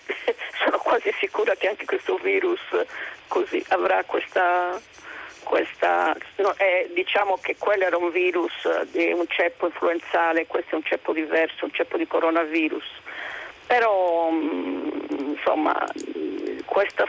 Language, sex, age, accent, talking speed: Italian, female, 50-69, native, 130 wpm